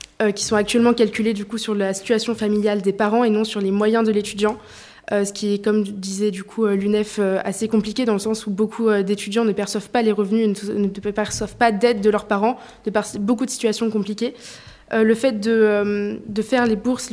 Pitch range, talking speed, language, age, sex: 210-235 Hz, 230 wpm, French, 20-39, female